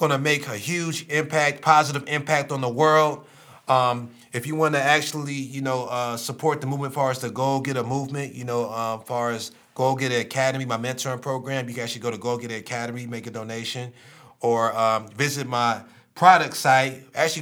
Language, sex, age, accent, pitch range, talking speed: English, male, 30-49, American, 115-145 Hz, 205 wpm